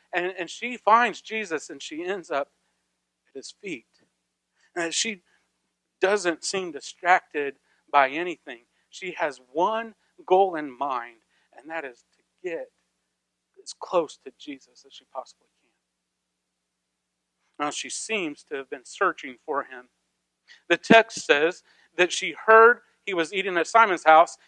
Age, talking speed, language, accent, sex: 40-59, 145 wpm, English, American, male